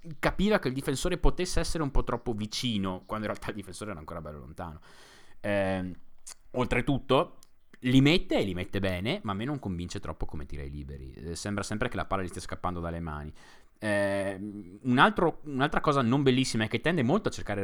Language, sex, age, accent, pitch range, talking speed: Italian, male, 20-39, native, 100-150 Hz, 200 wpm